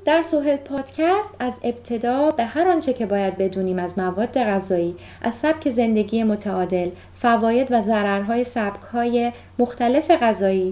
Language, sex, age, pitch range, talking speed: Persian, female, 20-39, 195-250 Hz, 130 wpm